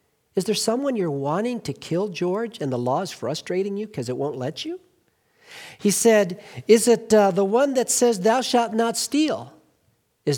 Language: English